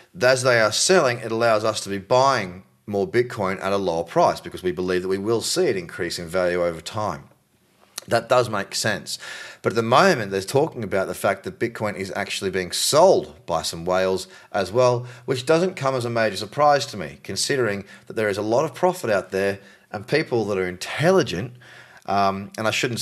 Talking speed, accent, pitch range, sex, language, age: 210 wpm, Australian, 95-125 Hz, male, English, 30-49